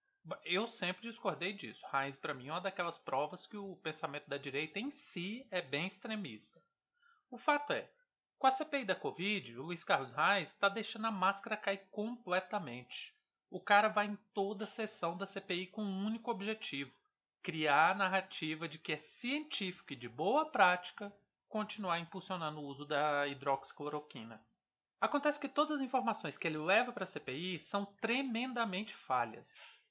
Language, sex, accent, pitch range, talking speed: Portuguese, male, Brazilian, 155-230 Hz, 165 wpm